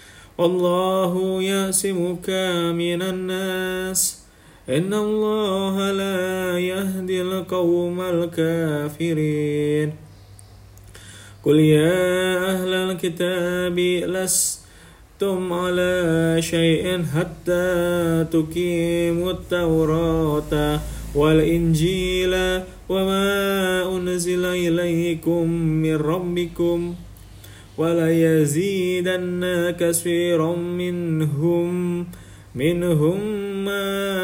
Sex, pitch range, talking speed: male, 155-180 Hz, 55 wpm